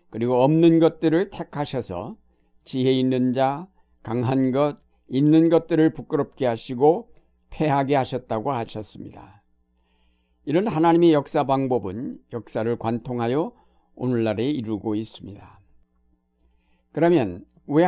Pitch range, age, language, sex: 100-150 Hz, 60-79, Korean, male